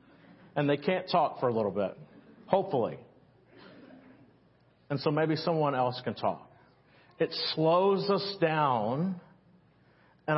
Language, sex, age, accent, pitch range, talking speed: English, male, 50-69, American, 140-175 Hz, 120 wpm